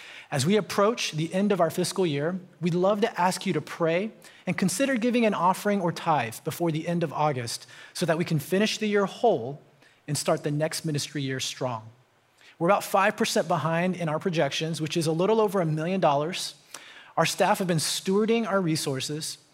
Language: English